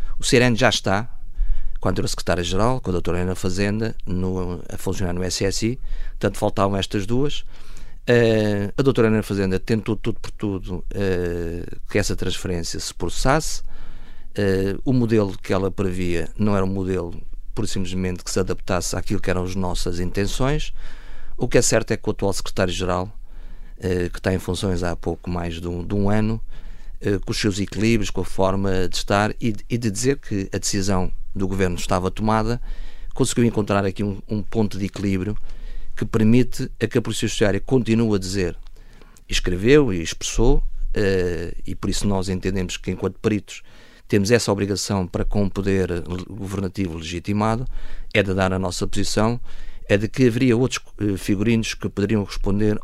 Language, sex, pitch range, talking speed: Portuguese, male, 95-110 Hz, 175 wpm